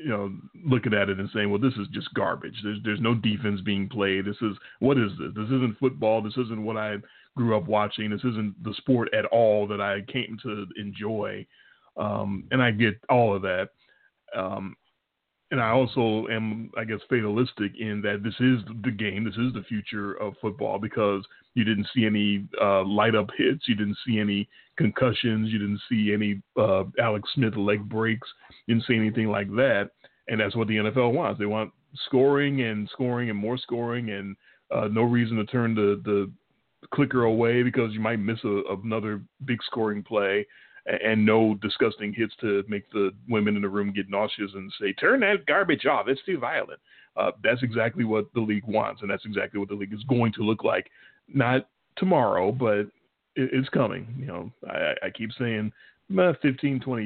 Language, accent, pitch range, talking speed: English, American, 105-120 Hz, 195 wpm